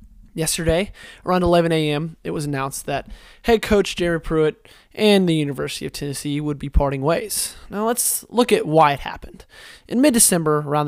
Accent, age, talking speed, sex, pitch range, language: American, 20-39, 170 wpm, male, 145-185 Hz, English